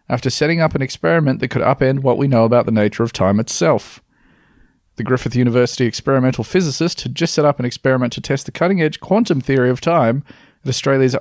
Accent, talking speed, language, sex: Australian, 205 wpm, English, male